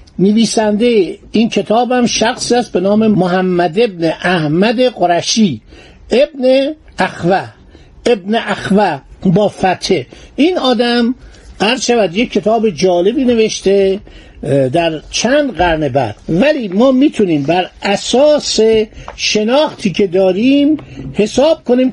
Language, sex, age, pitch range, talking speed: Persian, male, 60-79, 190-245 Hz, 100 wpm